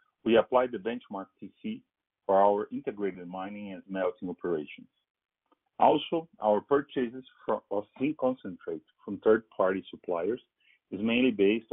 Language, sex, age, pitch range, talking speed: English, male, 40-59, 100-135 Hz, 125 wpm